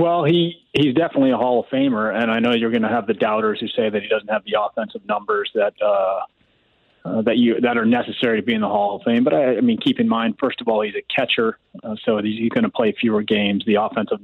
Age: 30-49